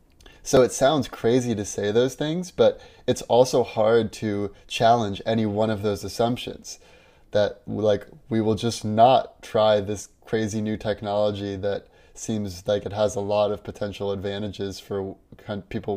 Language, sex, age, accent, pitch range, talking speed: English, male, 20-39, American, 100-105 Hz, 160 wpm